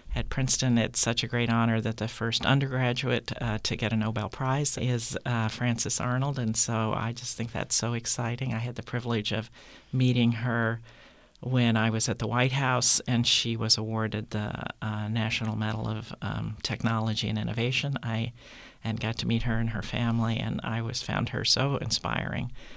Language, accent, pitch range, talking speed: English, American, 110-125 Hz, 190 wpm